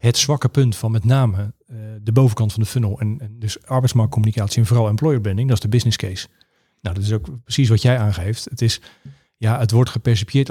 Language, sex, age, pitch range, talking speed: Dutch, male, 40-59, 110-130 Hz, 210 wpm